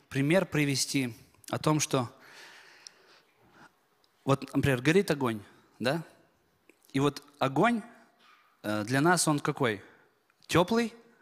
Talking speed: 95 wpm